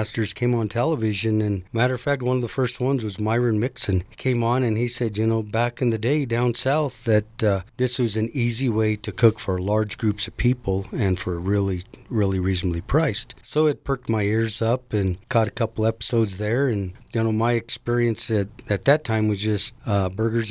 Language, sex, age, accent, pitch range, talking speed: English, male, 40-59, American, 105-125 Hz, 215 wpm